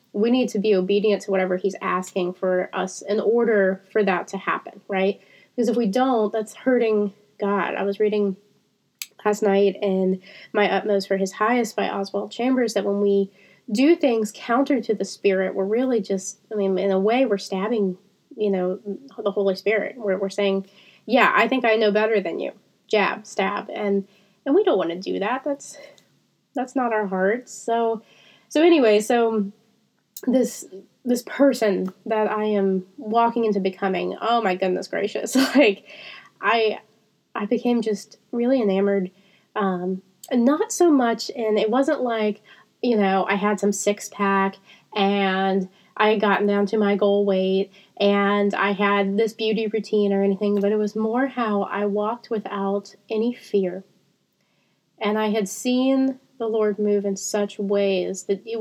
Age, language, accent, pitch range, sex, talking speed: 20-39, English, American, 195-225 Hz, female, 170 wpm